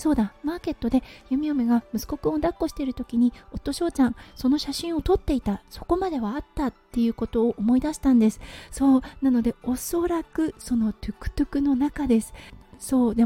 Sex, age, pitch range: female, 40-59, 235-300 Hz